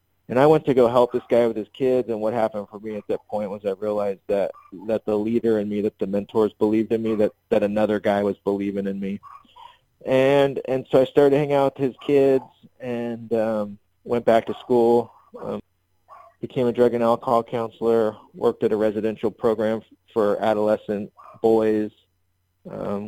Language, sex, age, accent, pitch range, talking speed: English, male, 30-49, American, 105-115 Hz, 190 wpm